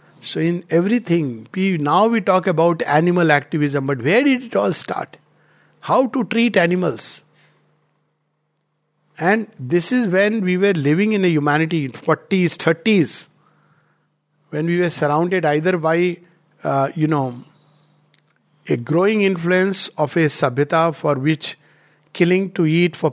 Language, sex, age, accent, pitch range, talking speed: English, male, 50-69, Indian, 150-185 Hz, 140 wpm